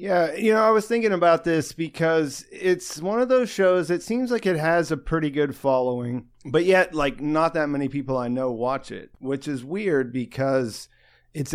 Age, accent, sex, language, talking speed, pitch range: 30-49, American, male, English, 205 wpm, 115-150 Hz